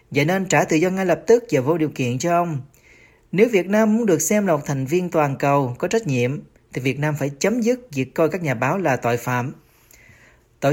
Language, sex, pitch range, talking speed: Vietnamese, male, 130-175 Hz, 245 wpm